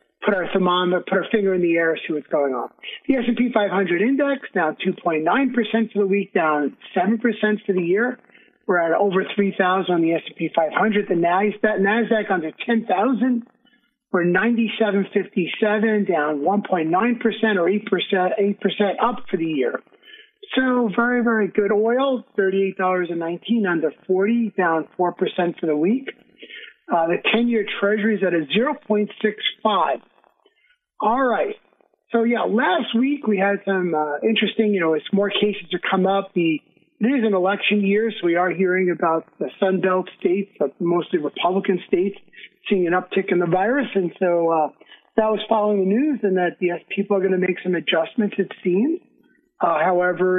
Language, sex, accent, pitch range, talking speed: English, male, American, 180-230 Hz, 160 wpm